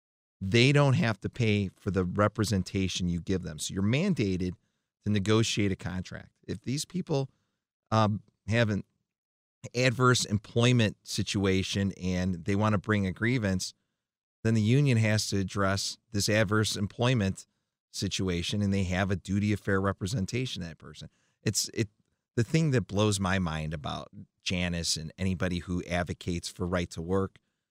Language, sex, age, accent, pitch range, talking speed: English, male, 30-49, American, 90-110 Hz, 155 wpm